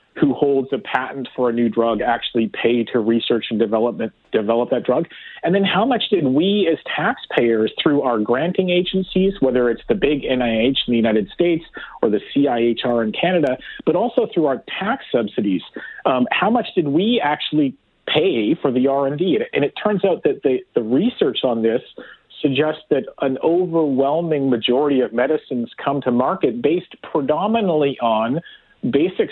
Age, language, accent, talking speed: 40-59, English, American, 170 wpm